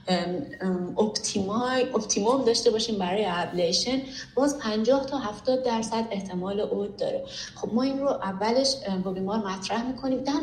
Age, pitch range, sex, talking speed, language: 30-49, 190-240 Hz, female, 145 wpm, Persian